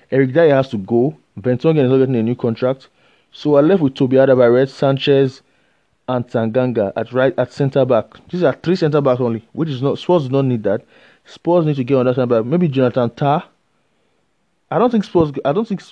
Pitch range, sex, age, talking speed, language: 120-150 Hz, male, 20-39, 210 wpm, English